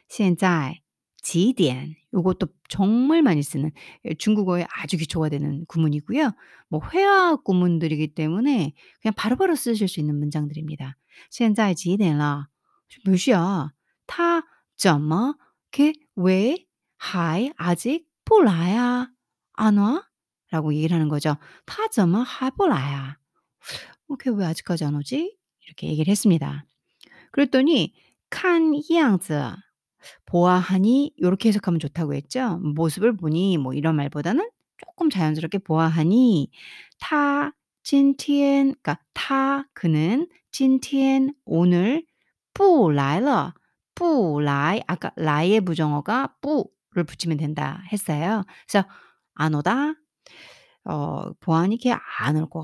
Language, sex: Korean, female